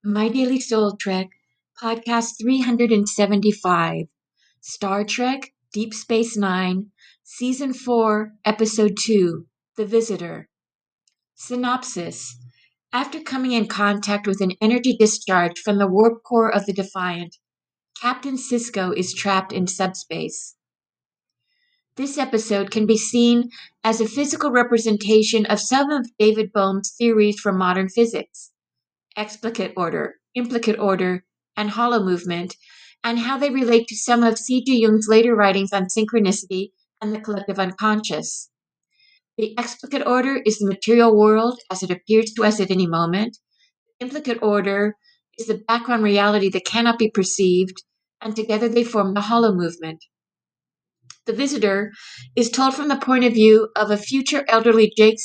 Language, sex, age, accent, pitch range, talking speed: English, female, 50-69, American, 195-235 Hz, 140 wpm